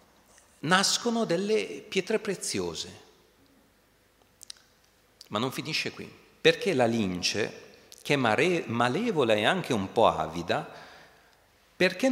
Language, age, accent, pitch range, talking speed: Italian, 40-59, native, 115-190 Hz, 100 wpm